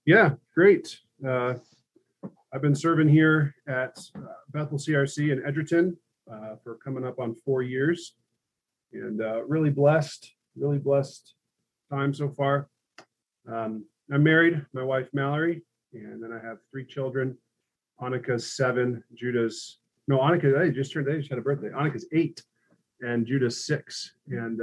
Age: 30-49